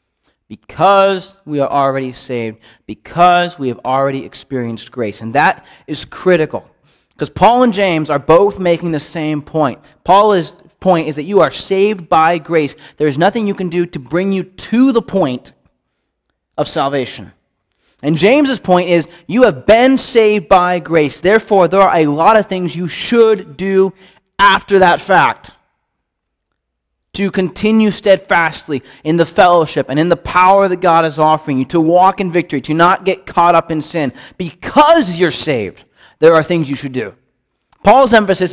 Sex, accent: male, American